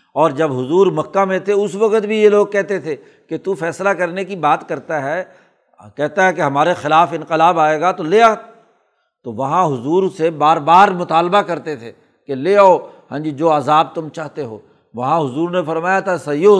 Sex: male